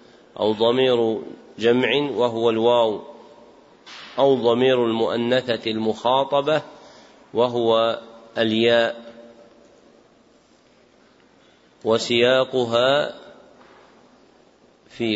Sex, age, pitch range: male, 40-59, 115-130 Hz